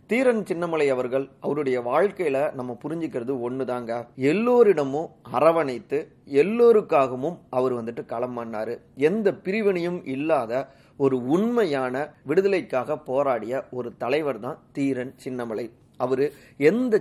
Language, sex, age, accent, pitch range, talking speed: Tamil, male, 30-49, native, 125-165 Hz, 100 wpm